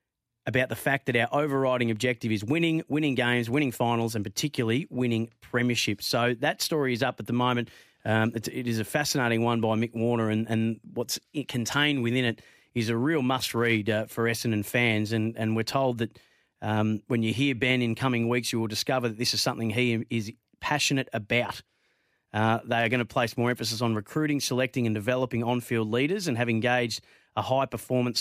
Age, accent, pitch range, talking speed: 30-49, Australian, 115-140 Hz, 200 wpm